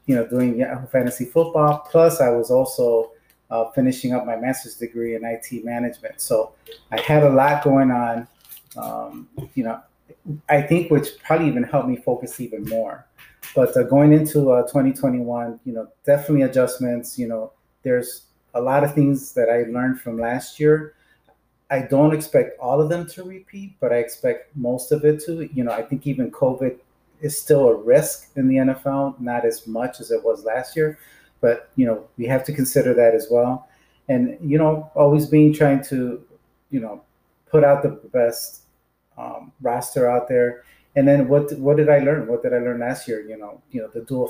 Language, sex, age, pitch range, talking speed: English, male, 30-49, 120-150 Hz, 195 wpm